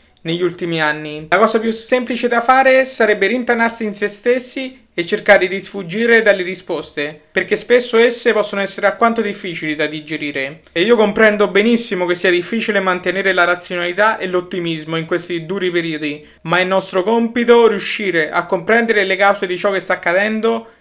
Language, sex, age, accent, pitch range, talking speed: Italian, male, 30-49, native, 175-220 Hz, 170 wpm